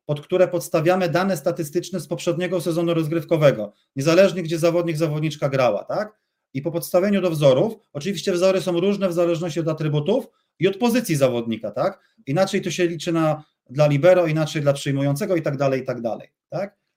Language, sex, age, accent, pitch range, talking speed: English, male, 30-49, Polish, 145-175 Hz, 175 wpm